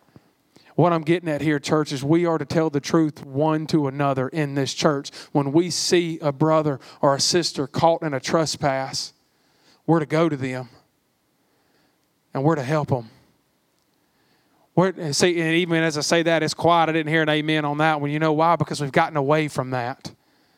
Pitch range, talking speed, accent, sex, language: 155-195 Hz, 190 wpm, American, male, English